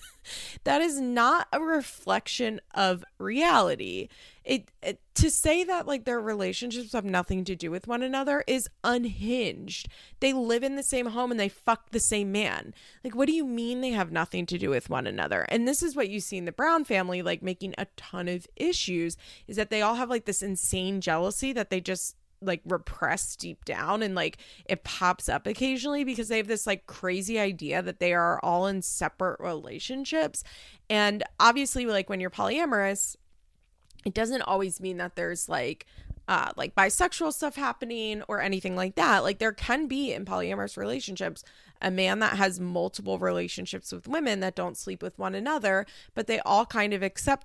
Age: 20-39